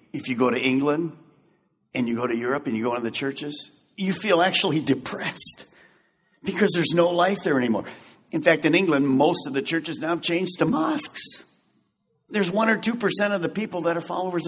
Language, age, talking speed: English, 50-69, 205 wpm